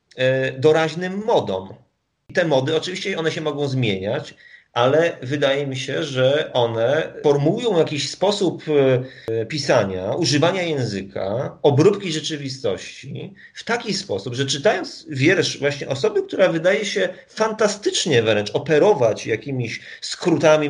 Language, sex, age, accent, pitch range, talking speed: Polish, male, 40-59, native, 130-180 Hz, 115 wpm